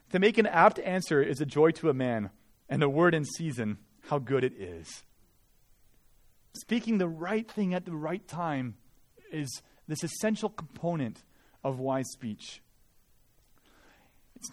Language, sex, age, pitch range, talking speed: English, male, 30-49, 130-185 Hz, 150 wpm